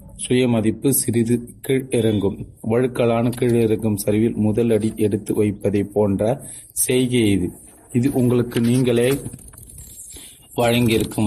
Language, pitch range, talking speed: Tamil, 105-120 Hz, 90 wpm